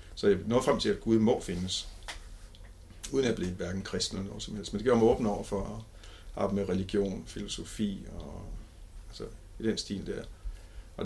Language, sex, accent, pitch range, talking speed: Danish, male, native, 90-105 Hz, 200 wpm